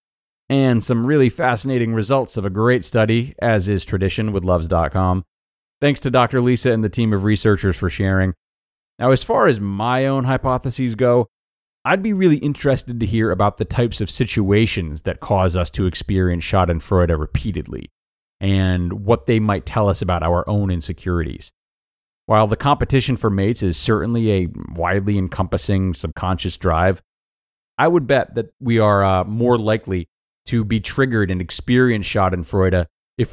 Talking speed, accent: 160 wpm, American